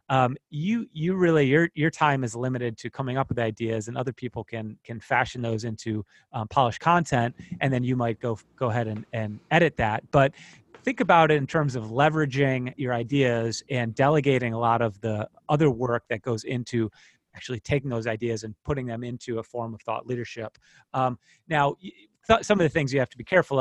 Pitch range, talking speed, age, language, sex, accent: 115-145 Hz, 205 wpm, 30-49, English, male, American